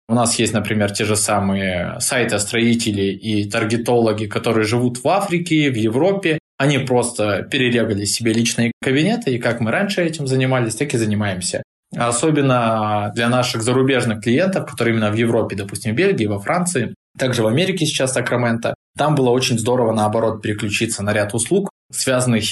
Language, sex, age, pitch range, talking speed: Russian, male, 20-39, 105-130 Hz, 165 wpm